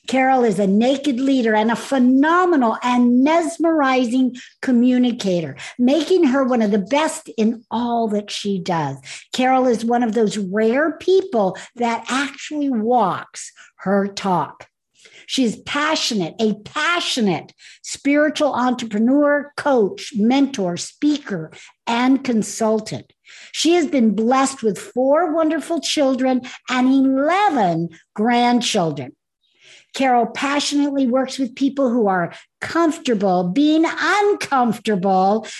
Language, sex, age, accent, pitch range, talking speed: English, female, 60-79, American, 210-285 Hz, 110 wpm